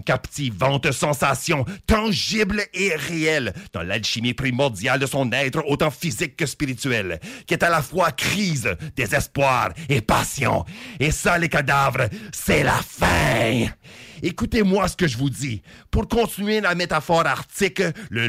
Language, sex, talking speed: English, male, 140 wpm